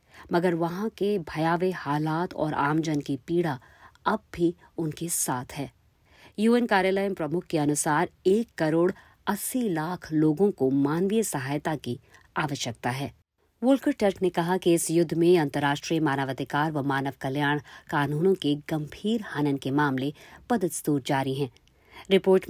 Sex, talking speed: female, 140 wpm